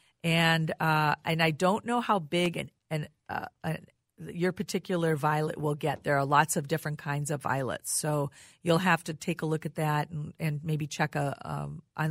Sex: female